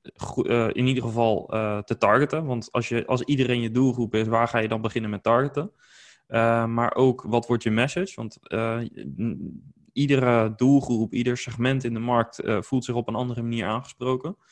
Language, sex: Dutch, male